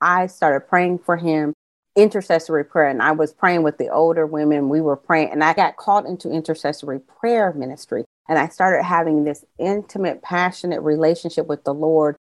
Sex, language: female, English